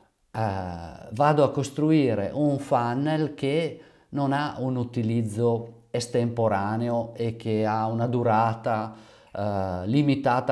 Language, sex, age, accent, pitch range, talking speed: Italian, male, 50-69, native, 110-140 Hz, 110 wpm